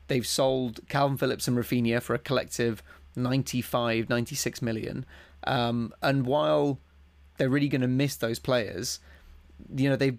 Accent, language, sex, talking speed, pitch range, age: British, English, male, 145 wpm, 115-135 Hz, 30-49